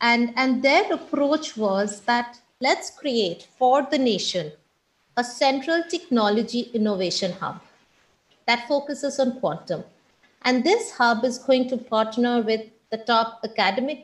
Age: 50-69